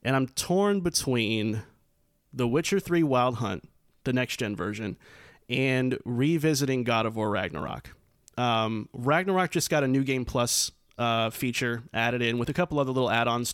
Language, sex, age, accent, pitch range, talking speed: English, male, 30-49, American, 120-145 Hz, 160 wpm